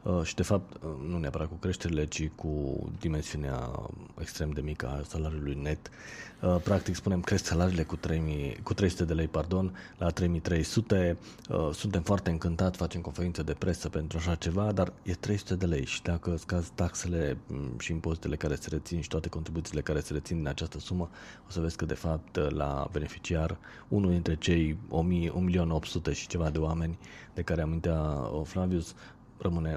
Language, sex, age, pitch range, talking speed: Romanian, male, 30-49, 75-90 Hz, 165 wpm